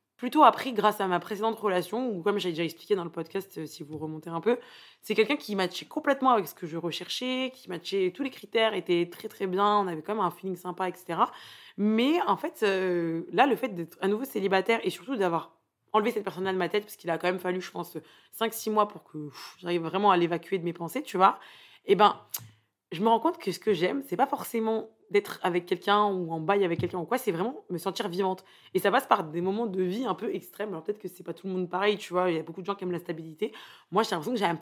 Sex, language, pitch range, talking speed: female, French, 180-225 Hz, 265 wpm